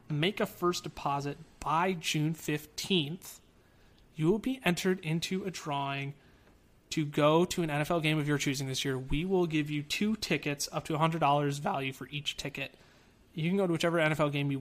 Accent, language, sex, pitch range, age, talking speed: American, English, male, 140-175 Hz, 30-49, 195 wpm